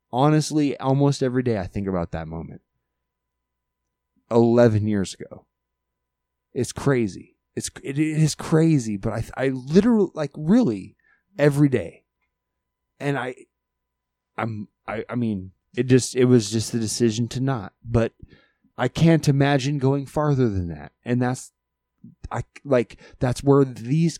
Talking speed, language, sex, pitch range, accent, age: 140 wpm, English, male, 120-180 Hz, American, 20-39